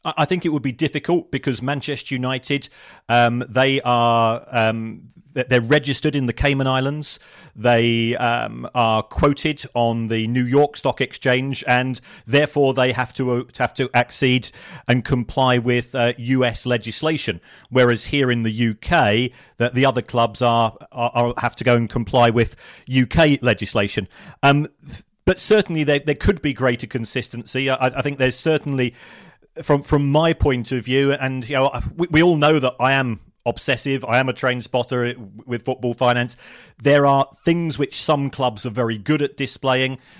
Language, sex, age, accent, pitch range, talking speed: English, male, 40-59, British, 120-145 Hz, 170 wpm